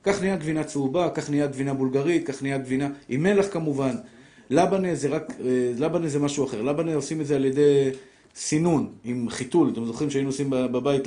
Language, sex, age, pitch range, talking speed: Hebrew, male, 50-69, 130-170 Hz, 190 wpm